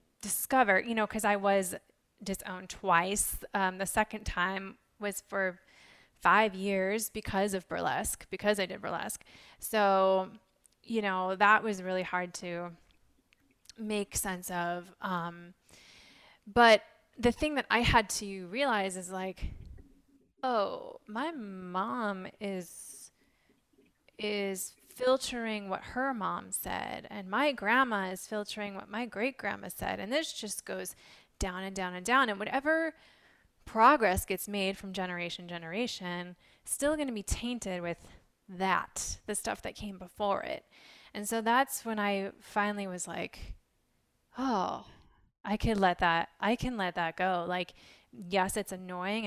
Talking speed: 140 wpm